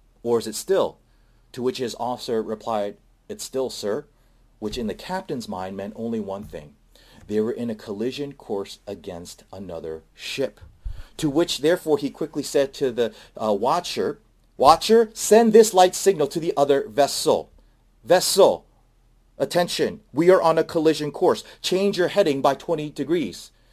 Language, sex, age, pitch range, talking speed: English, male, 40-59, 115-175 Hz, 160 wpm